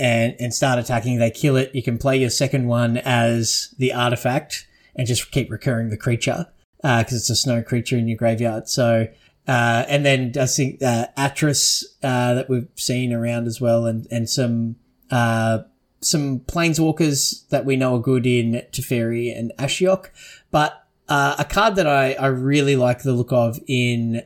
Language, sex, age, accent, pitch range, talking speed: English, male, 30-49, Australian, 120-140 Hz, 185 wpm